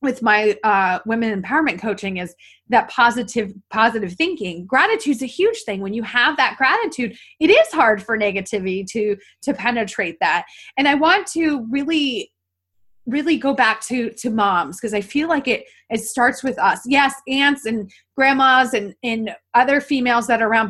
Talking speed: 175 wpm